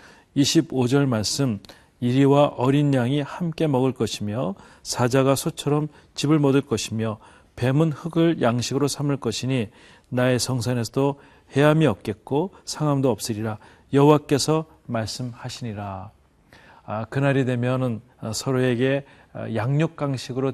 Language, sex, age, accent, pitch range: Korean, male, 40-59, native, 115-145 Hz